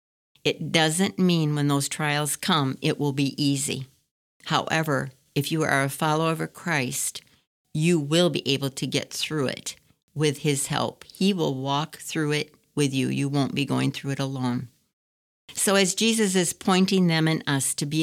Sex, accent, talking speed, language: female, American, 180 wpm, English